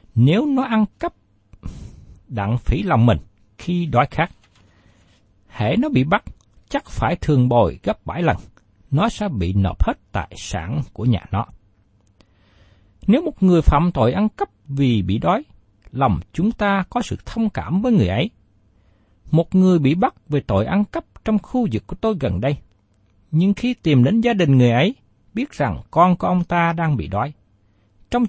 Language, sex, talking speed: Vietnamese, male, 180 wpm